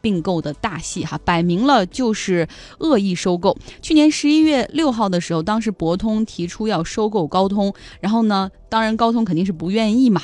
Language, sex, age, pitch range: Chinese, female, 20-39, 175-235 Hz